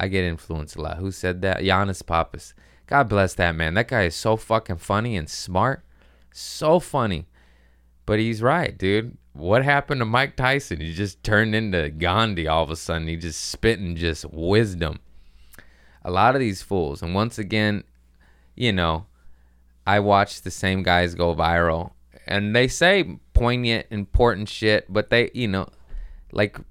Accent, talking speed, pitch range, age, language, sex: American, 170 wpm, 80-105 Hz, 20-39, English, male